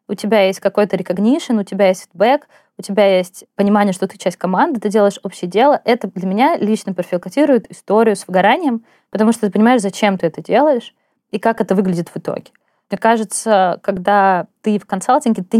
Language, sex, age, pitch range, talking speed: Russian, female, 20-39, 200-250 Hz, 190 wpm